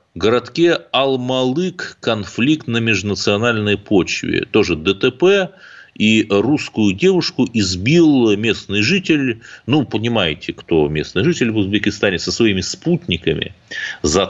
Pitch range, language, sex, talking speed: 90-130 Hz, Russian, male, 110 wpm